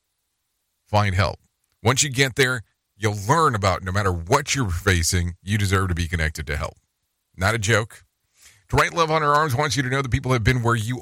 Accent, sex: American, male